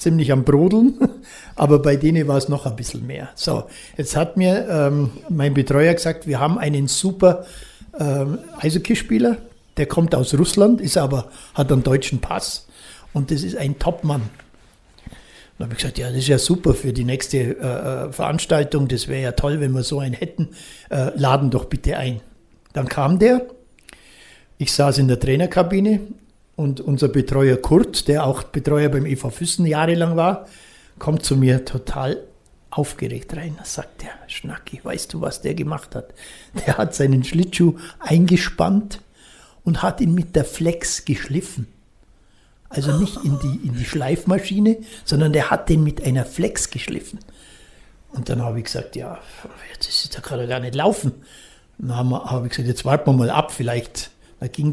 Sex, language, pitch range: male, German, 130-170 Hz